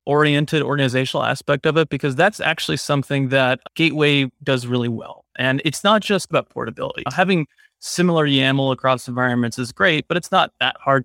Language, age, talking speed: English, 30-49, 175 wpm